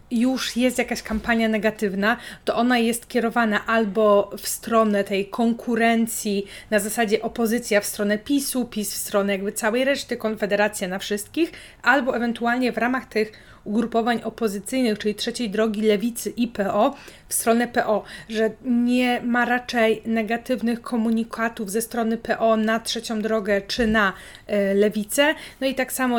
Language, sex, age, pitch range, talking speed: Polish, female, 30-49, 210-235 Hz, 145 wpm